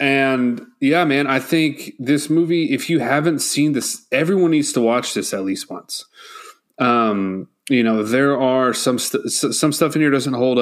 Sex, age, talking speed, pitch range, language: male, 30-49, 185 wpm, 100-120 Hz, English